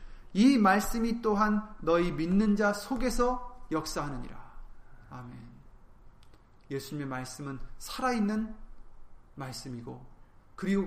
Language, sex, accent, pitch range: Korean, male, native, 125-190 Hz